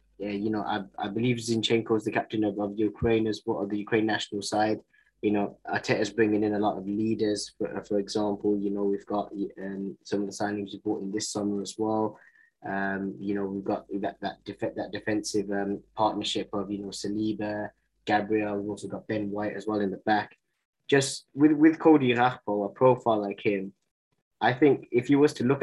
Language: English